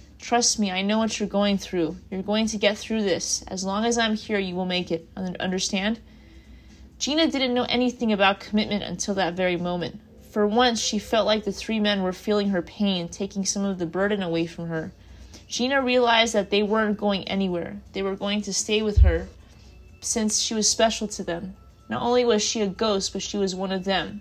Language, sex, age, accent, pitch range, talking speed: English, female, 20-39, American, 180-215 Hz, 215 wpm